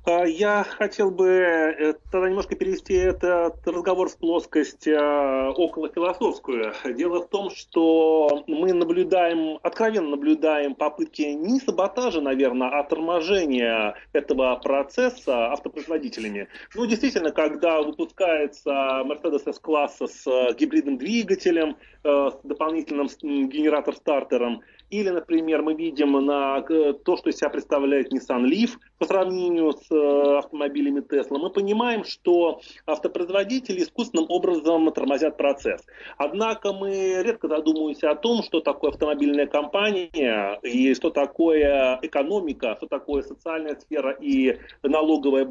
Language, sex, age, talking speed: Russian, male, 30-49, 115 wpm